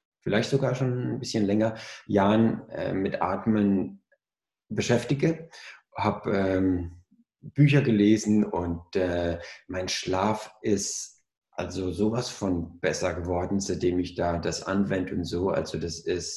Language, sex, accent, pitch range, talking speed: German, male, German, 90-110 Hz, 125 wpm